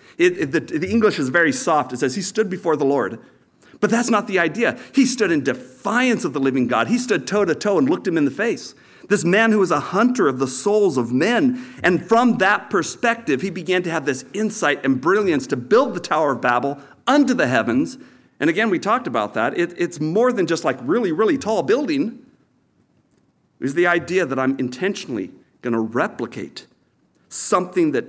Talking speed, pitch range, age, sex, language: 210 wpm, 135-220 Hz, 50-69, male, English